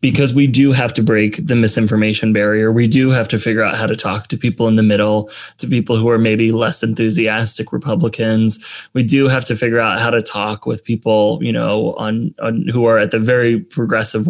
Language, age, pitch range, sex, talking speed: English, 20-39, 110-130 Hz, male, 220 wpm